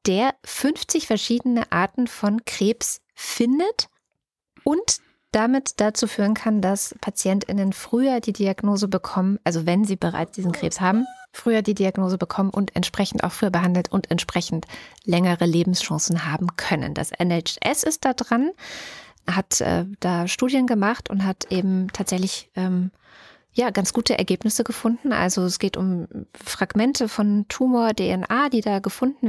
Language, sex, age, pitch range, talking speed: German, female, 20-39, 180-230 Hz, 145 wpm